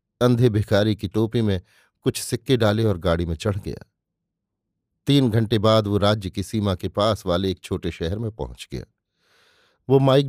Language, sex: Hindi, male